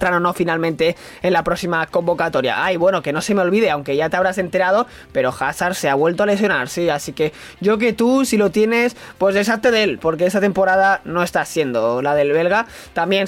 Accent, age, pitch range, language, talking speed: Spanish, 20-39, 175-215 Hz, Spanish, 225 wpm